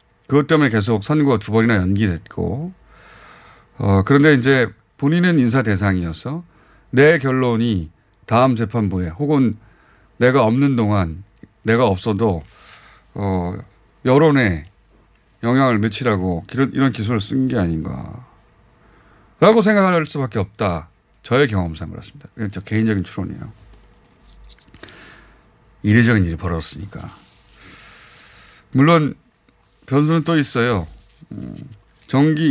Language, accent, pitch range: Korean, native, 95-135 Hz